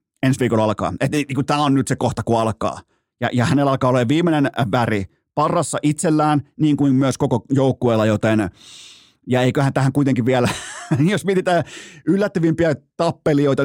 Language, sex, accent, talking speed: Finnish, male, native, 150 wpm